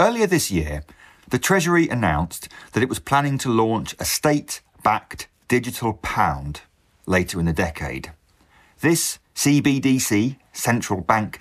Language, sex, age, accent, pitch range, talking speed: English, male, 40-59, British, 85-125 Hz, 125 wpm